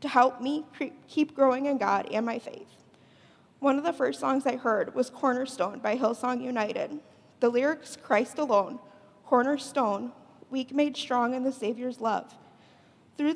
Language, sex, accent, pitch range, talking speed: English, female, American, 225-270 Hz, 155 wpm